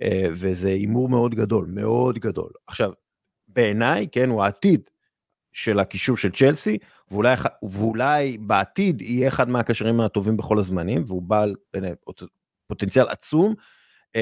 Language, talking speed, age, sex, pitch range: English, 125 wpm, 30-49, male, 100-130 Hz